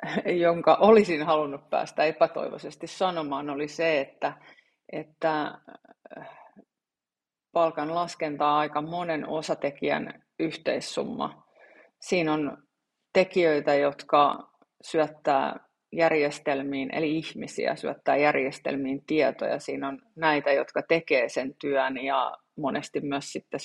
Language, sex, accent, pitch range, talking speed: Finnish, female, native, 145-165 Hz, 95 wpm